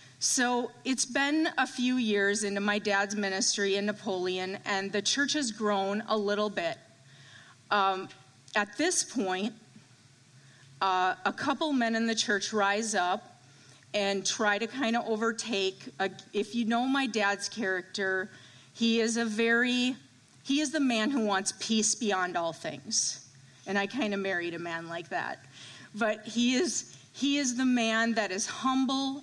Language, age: English, 40-59